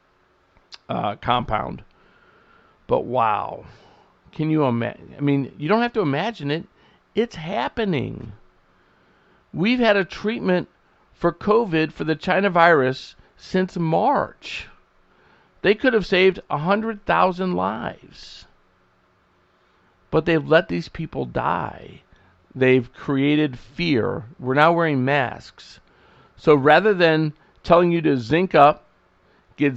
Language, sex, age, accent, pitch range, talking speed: English, male, 50-69, American, 125-175 Hz, 120 wpm